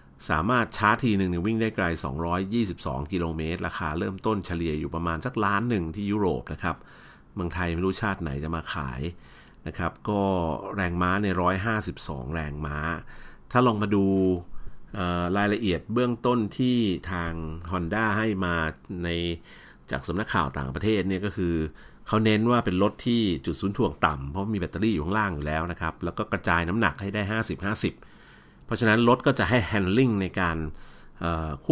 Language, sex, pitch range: Thai, male, 85-105 Hz